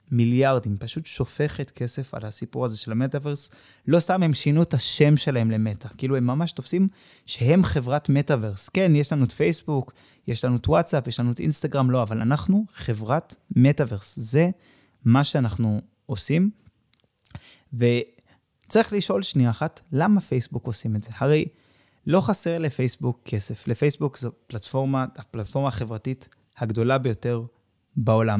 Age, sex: 20-39, male